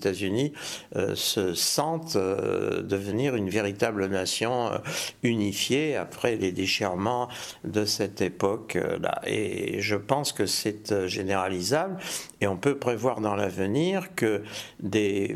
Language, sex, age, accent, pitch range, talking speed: French, male, 60-79, French, 100-120 Hz, 110 wpm